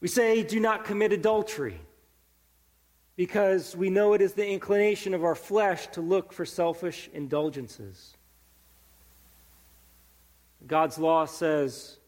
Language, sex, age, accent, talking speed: English, male, 40-59, American, 120 wpm